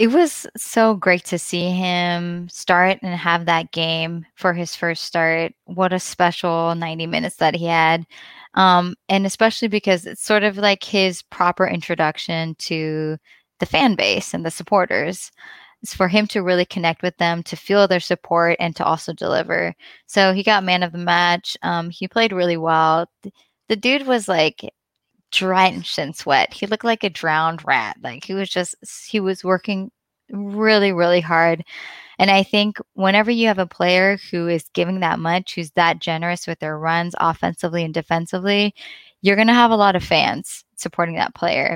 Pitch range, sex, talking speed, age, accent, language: 170-195 Hz, female, 180 wpm, 20-39, American, English